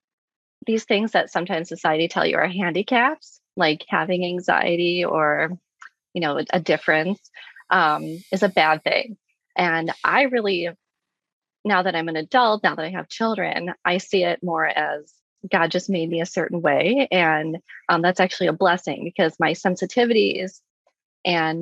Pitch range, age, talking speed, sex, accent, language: 170-205 Hz, 30-49, 160 wpm, female, American, English